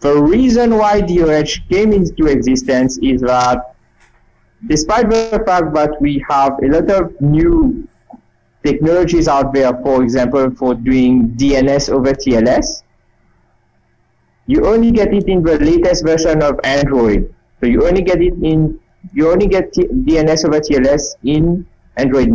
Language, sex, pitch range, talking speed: English, male, 140-180 Hz, 140 wpm